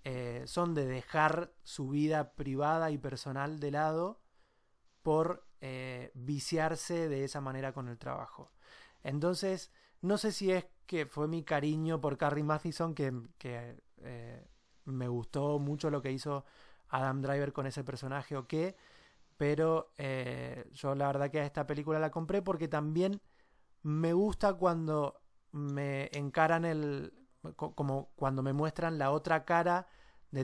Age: 20-39